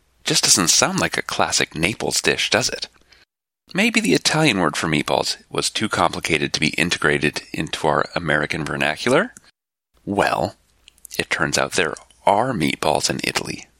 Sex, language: male, English